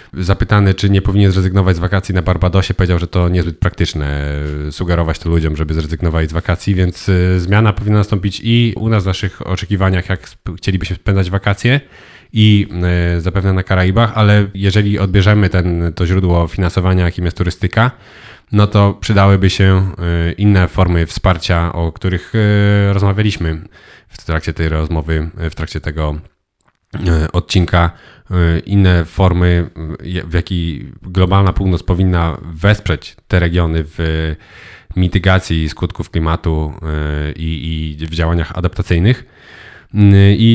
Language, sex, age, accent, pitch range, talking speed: Polish, male, 30-49, native, 85-105 Hz, 125 wpm